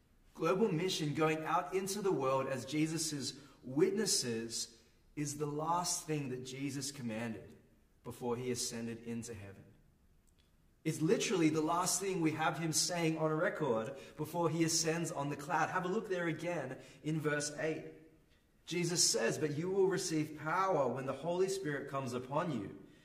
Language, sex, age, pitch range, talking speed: English, male, 30-49, 120-170 Hz, 160 wpm